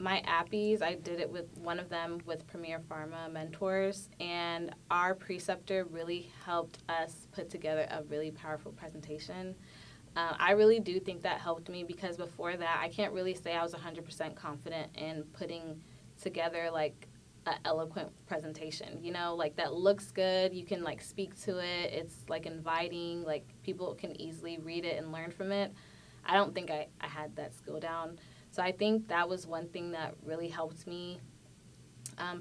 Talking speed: 180 wpm